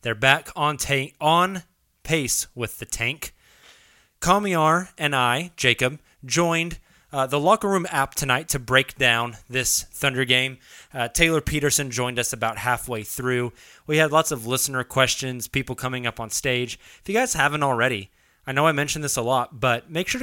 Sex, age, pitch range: male, 20-39, 120-145 Hz